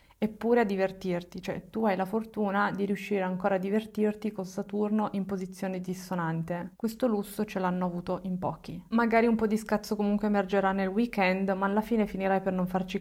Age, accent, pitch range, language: 20-39, native, 185-210 Hz, Italian